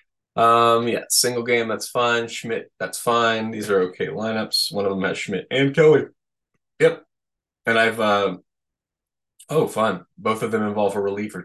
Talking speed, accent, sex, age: 170 wpm, American, male, 20-39